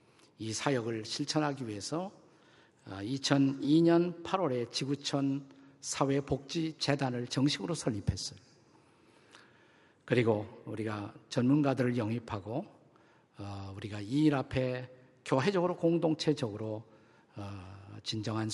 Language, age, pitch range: Korean, 50-69, 110-145 Hz